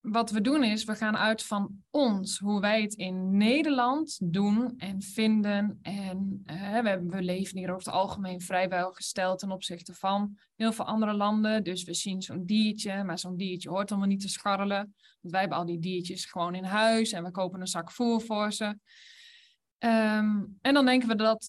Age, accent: 20-39, Dutch